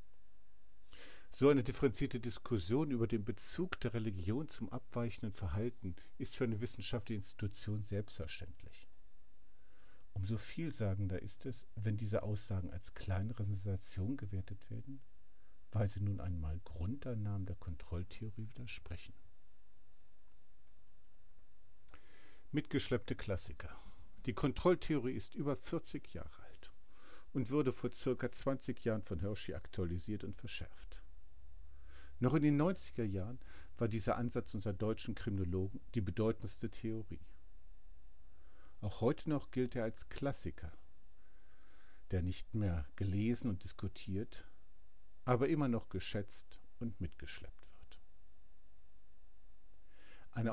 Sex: male